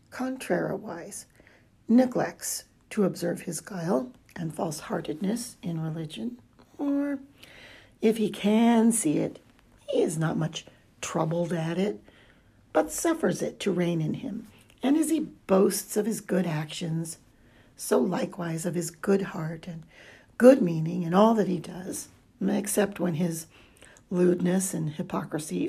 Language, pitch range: English, 160-220 Hz